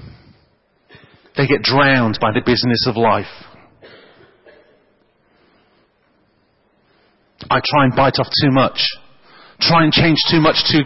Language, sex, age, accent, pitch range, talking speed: English, male, 40-59, British, 115-145 Hz, 115 wpm